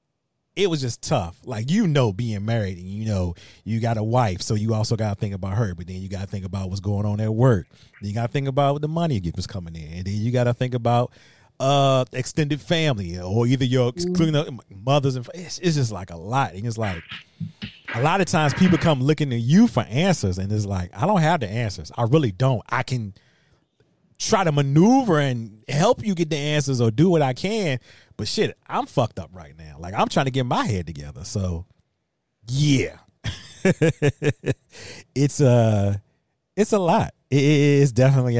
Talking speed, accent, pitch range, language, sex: 215 wpm, American, 110-150 Hz, English, male